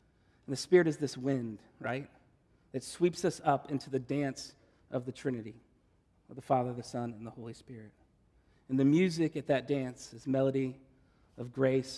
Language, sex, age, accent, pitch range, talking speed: English, male, 40-59, American, 120-145 Hz, 175 wpm